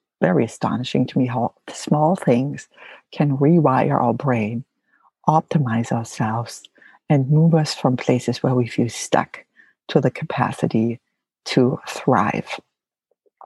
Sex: female